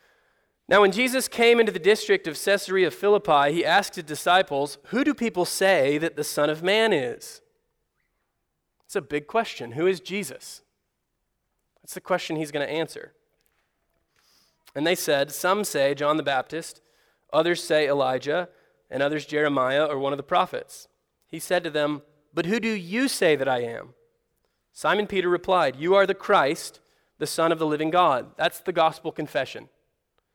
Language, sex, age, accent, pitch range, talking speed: English, male, 20-39, American, 155-205 Hz, 170 wpm